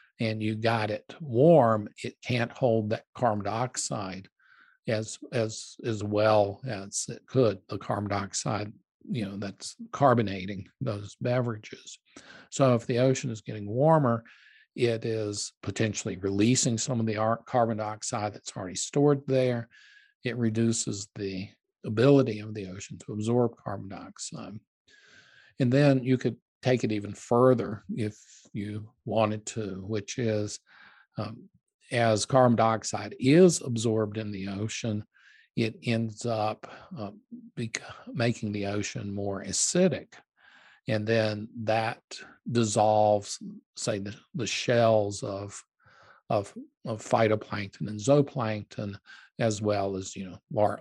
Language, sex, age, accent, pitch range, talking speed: English, male, 50-69, American, 105-125 Hz, 130 wpm